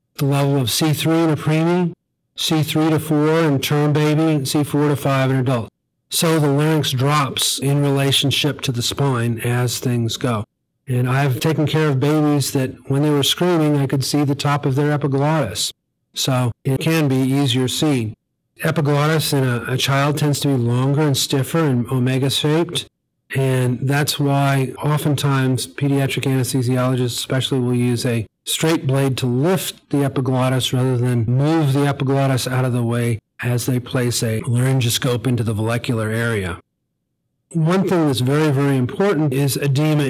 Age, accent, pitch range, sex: 40-59, American, 125-150 Hz, male